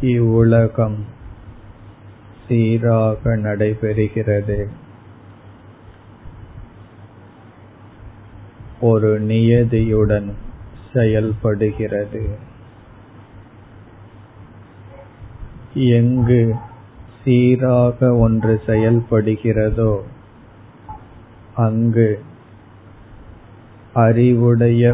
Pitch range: 105-115 Hz